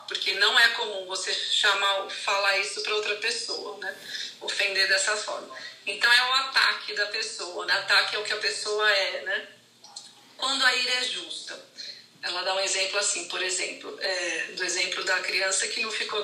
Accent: Brazilian